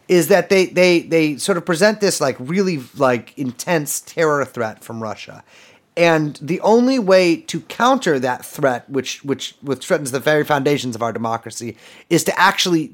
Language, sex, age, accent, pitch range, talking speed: English, male, 30-49, American, 120-175 Hz, 175 wpm